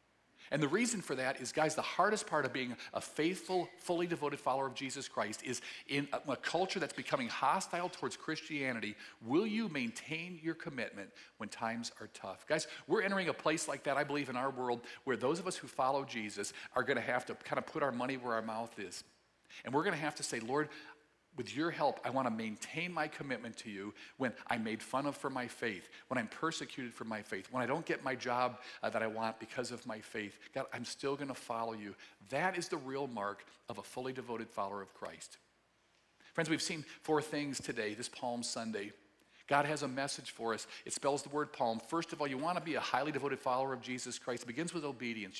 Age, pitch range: 50-69, 120-155 Hz